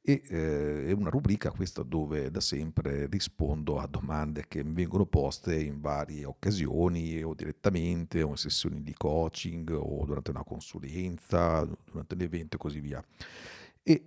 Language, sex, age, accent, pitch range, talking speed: Italian, male, 50-69, native, 75-90 Hz, 155 wpm